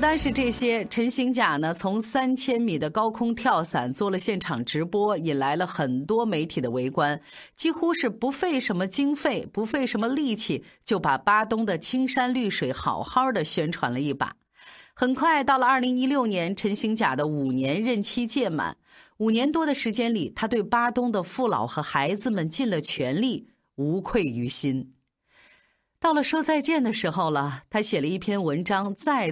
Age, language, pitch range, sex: 30-49, Chinese, 165-260 Hz, female